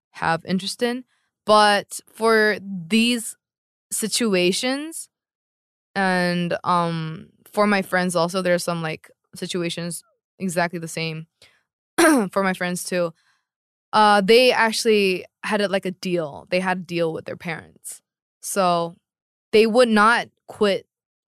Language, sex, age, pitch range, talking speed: English, female, 20-39, 170-205 Hz, 125 wpm